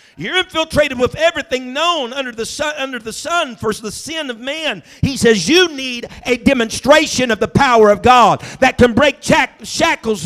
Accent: American